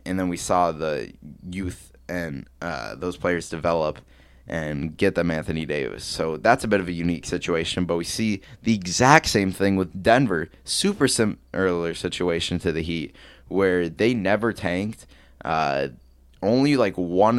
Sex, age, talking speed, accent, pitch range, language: male, 20-39, 160 wpm, American, 85-100 Hz, English